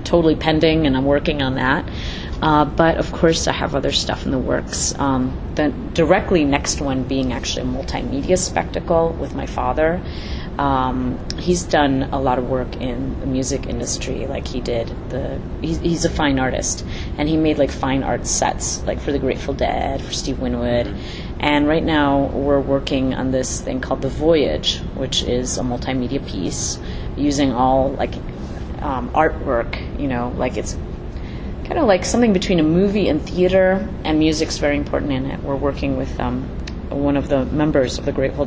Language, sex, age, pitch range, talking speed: English, female, 30-49, 125-150 Hz, 180 wpm